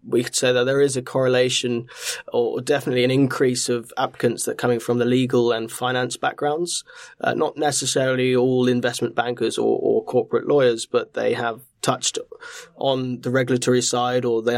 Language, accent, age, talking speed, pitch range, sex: English, British, 20-39, 175 wpm, 120-140 Hz, male